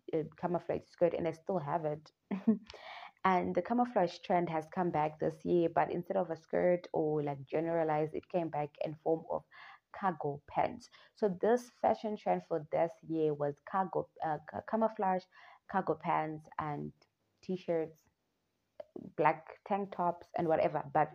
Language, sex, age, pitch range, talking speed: English, female, 20-39, 150-215 Hz, 155 wpm